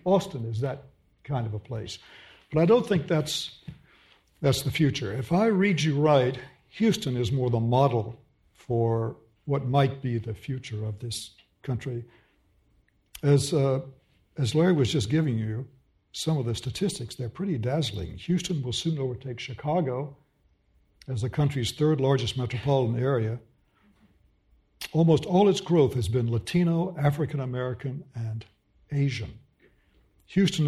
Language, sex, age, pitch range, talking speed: English, male, 60-79, 120-155 Hz, 145 wpm